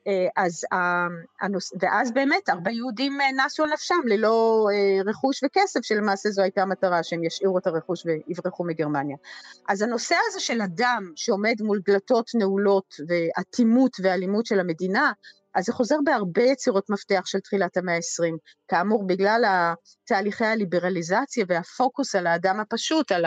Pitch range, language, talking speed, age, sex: 180-235 Hz, Hebrew, 140 wpm, 30-49, female